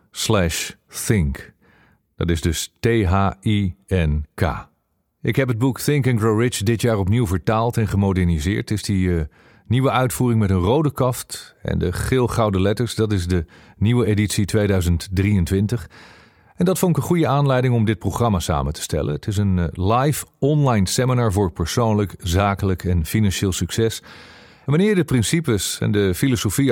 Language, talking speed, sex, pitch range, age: Dutch, 165 wpm, male, 95-125 Hz, 40-59